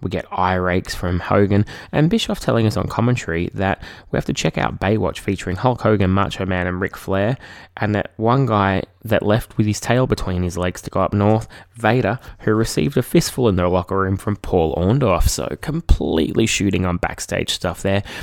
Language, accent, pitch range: English, Australian, 90-110 Hz